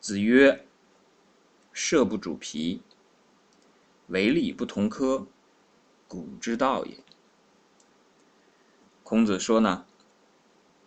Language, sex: Chinese, male